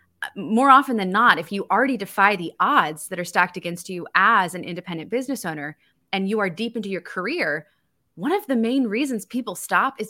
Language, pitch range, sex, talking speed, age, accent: English, 185-245 Hz, female, 210 wpm, 20-39, American